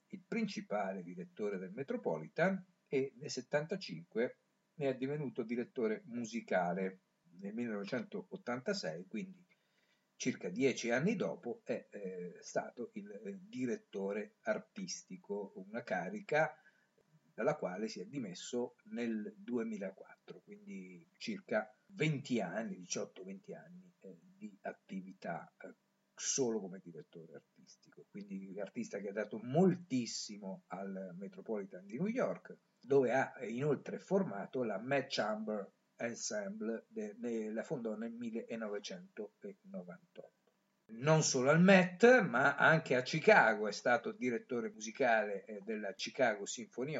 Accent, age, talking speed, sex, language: native, 50-69, 115 wpm, male, Italian